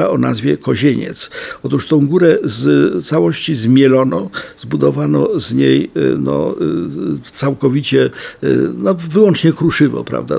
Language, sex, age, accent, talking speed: Polish, male, 60-79, native, 105 wpm